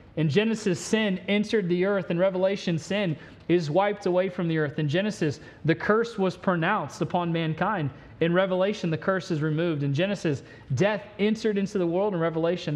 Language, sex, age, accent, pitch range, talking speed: English, male, 30-49, American, 145-185 Hz, 180 wpm